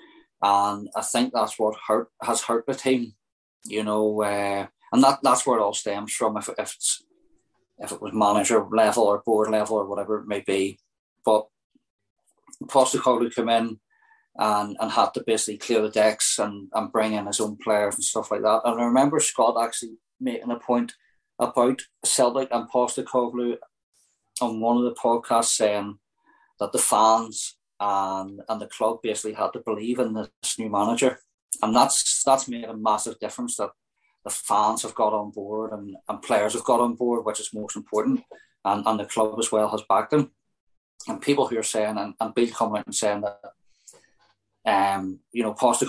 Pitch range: 105-125 Hz